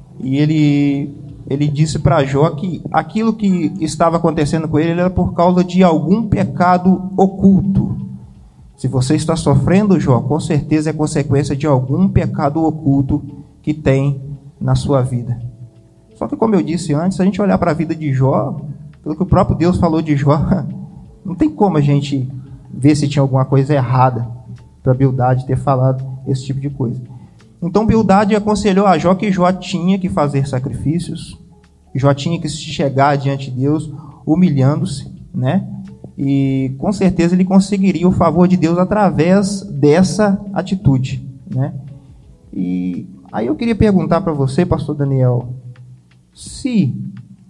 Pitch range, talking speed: 135-175 Hz, 160 wpm